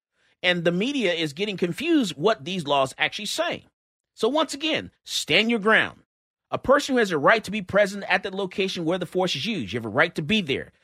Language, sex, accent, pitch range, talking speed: English, male, American, 145-215 Hz, 225 wpm